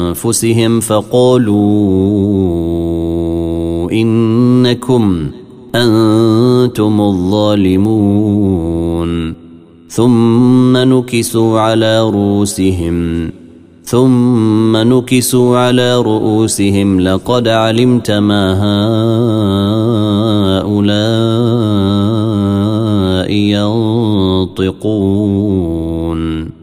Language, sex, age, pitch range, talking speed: Arabic, male, 30-49, 95-115 Hz, 40 wpm